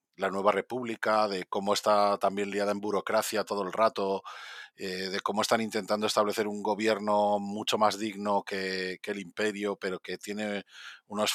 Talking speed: 170 wpm